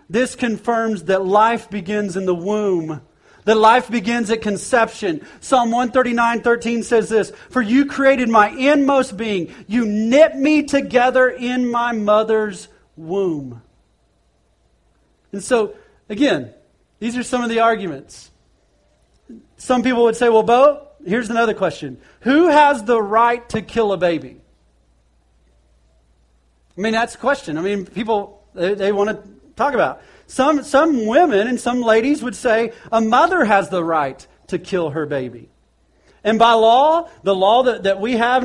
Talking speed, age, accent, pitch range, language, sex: 150 wpm, 40-59, American, 195-250 Hz, English, male